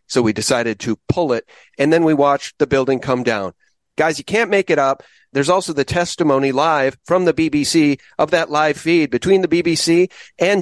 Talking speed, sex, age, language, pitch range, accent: 205 wpm, male, 40-59, English, 135-185 Hz, American